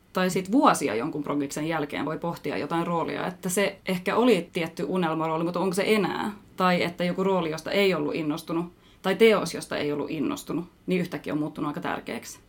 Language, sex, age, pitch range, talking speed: Finnish, female, 30-49, 165-200 Hz, 190 wpm